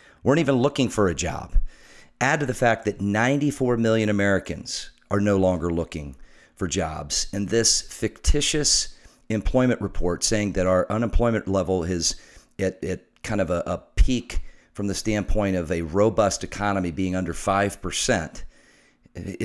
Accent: American